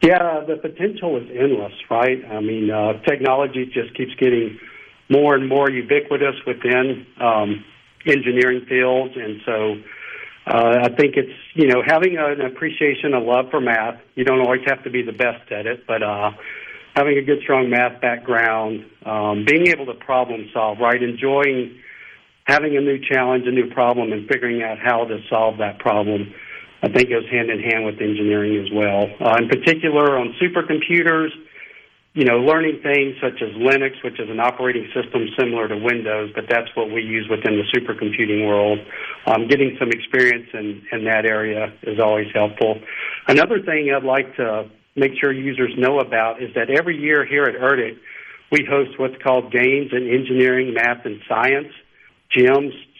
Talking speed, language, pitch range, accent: 175 wpm, English, 110-140 Hz, American